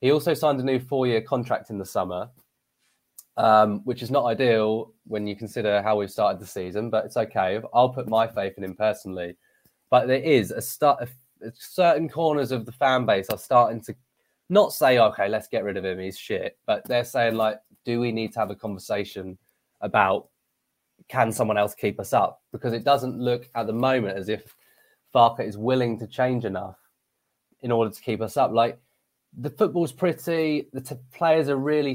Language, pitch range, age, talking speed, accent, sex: English, 105-130 Hz, 20-39, 195 wpm, British, male